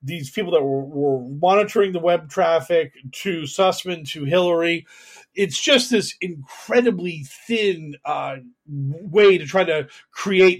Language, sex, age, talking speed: English, male, 30-49, 135 wpm